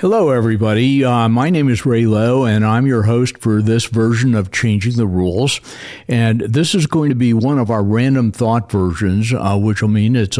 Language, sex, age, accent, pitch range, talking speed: English, male, 60-79, American, 105-125 Hz, 210 wpm